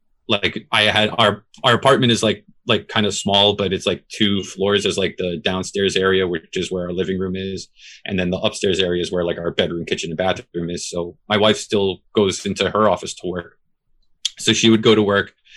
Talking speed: 225 wpm